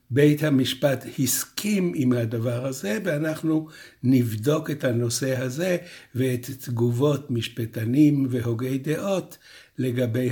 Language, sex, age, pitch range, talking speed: Hebrew, male, 60-79, 125-155 Hz, 100 wpm